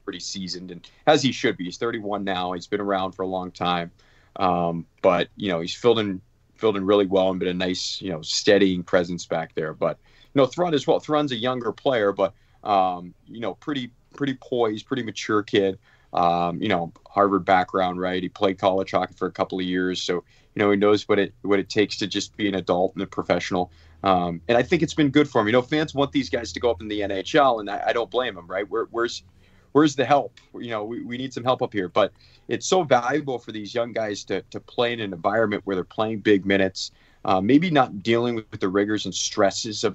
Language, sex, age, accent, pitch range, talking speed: English, male, 30-49, American, 95-115 Hz, 245 wpm